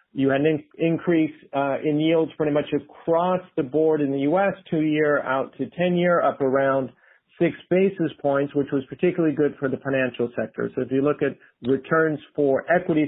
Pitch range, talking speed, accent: 135-155 Hz, 185 wpm, American